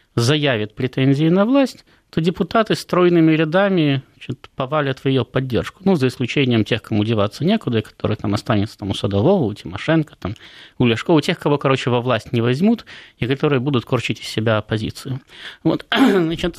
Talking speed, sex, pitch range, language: 175 wpm, male, 115-150 Hz, Russian